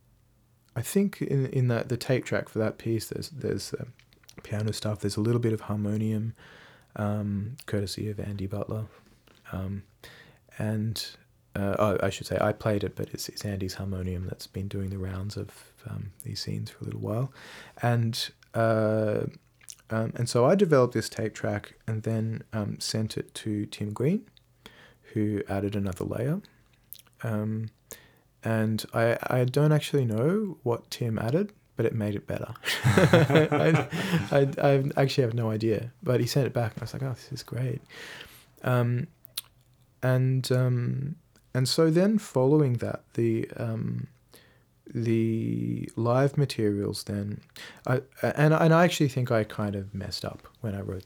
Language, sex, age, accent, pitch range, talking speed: English, male, 30-49, Australian, 105-130 Hz, 165 wpm